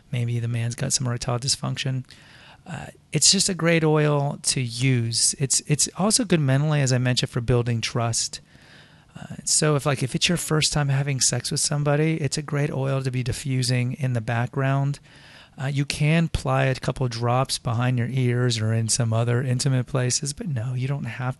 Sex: male